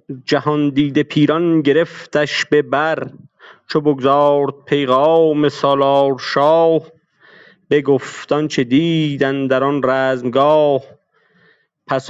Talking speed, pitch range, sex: 85 wpm, 140-210 Hz, male